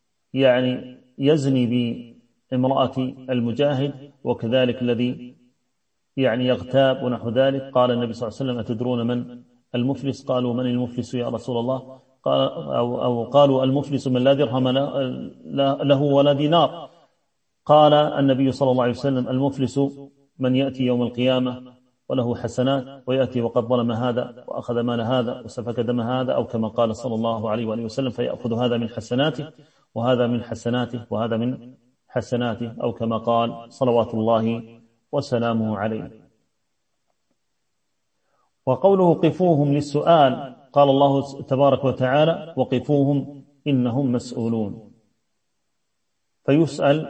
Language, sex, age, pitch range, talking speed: Arabic, male, 30-49, 120-140 Hz, 120 wpm